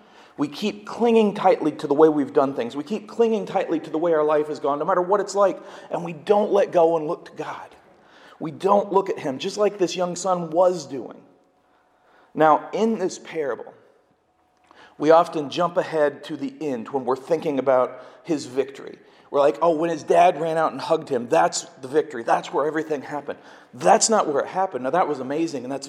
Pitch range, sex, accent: 150-190 Hz, male, American